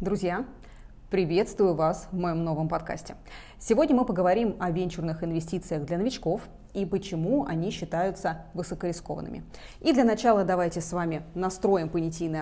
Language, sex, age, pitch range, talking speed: Russian, female, 20-39, 165-215 Hz, 135 wpm